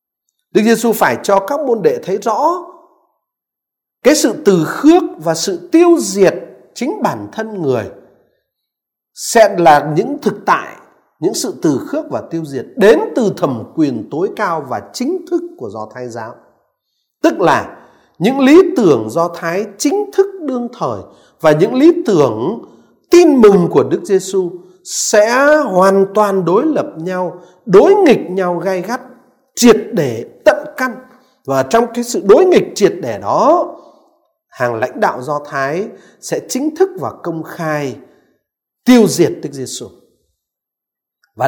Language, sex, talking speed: Vietnamese, male, 155 wpm